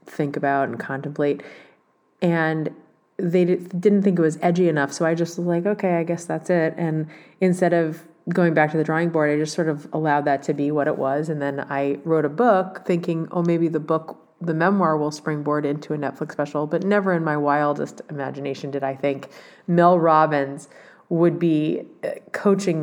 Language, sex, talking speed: English, female, 195 wpm